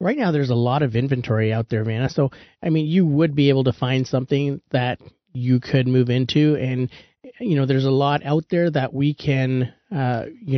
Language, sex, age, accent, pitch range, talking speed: English, male, 30-49, American, 125-145 Hz, 215 wpm